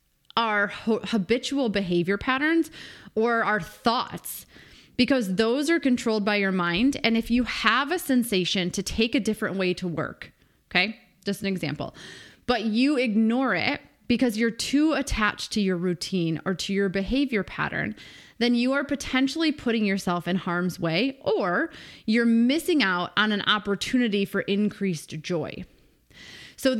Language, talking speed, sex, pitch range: English, 150 wpm, female, 180-235 Hz